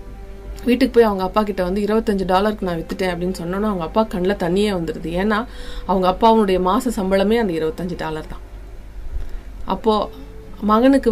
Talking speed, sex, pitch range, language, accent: 150 wpm, female, 175-225 Hz, Tamil, native